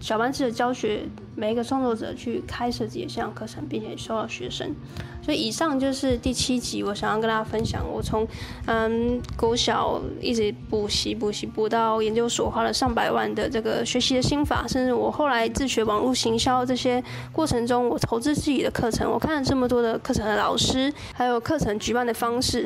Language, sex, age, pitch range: Chinese, female, 10-29, 220-260 Hz